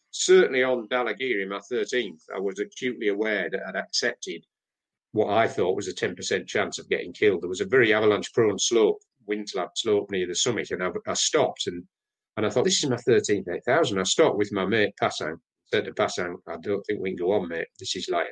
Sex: male